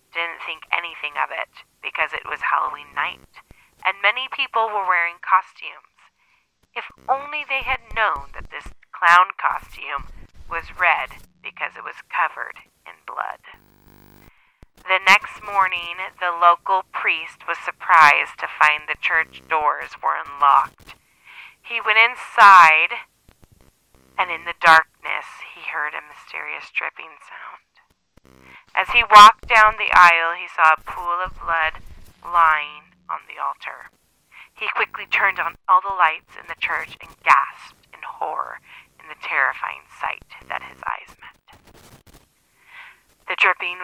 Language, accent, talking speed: English, American, 140 wpm